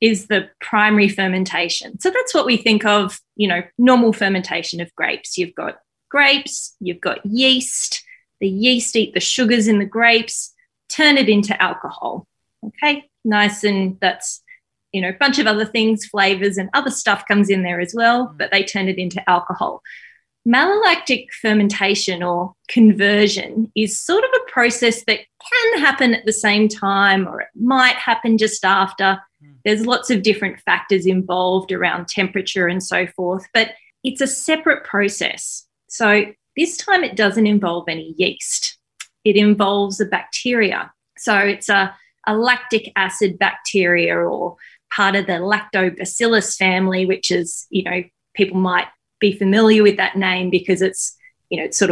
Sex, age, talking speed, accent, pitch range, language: female, 20-39, 160 wpm, Australian, 185-230 Hz, English